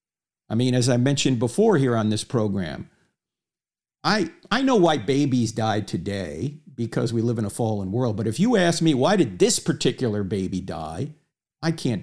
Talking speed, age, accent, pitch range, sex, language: 185 wpm, 50-69, American, 125-175 Hz, male, English